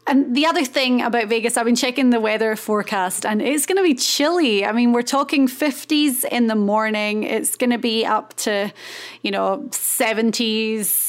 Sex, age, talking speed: female, 20-39, 190 wpm